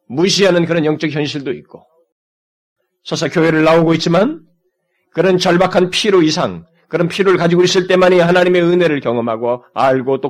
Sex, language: male, Korean